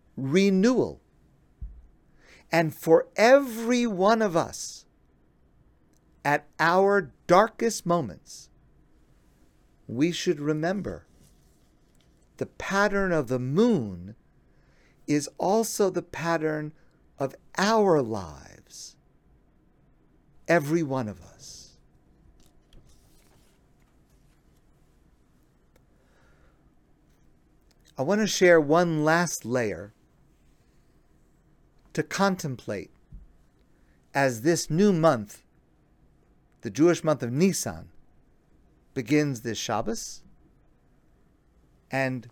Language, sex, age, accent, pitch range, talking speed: English, male, 50-69, American, 115-175 Hz, 75 wpm